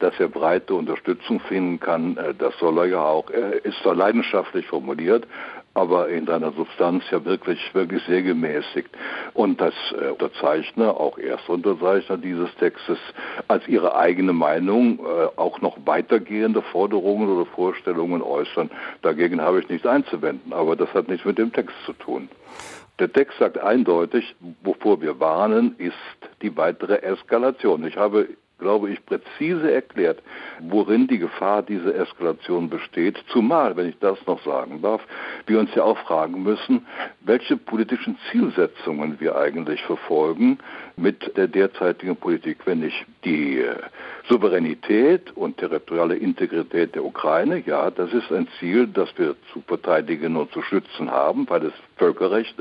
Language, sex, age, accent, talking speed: German, male, 60-79, German, 145 wpm